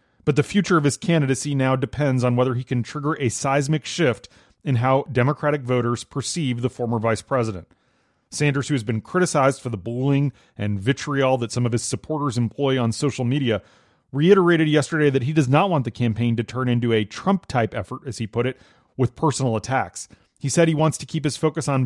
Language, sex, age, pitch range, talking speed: English, male, 30-49, 115-140 Hz, 205 wpm